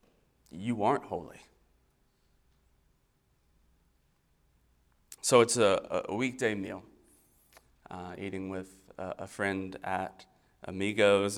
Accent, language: American, English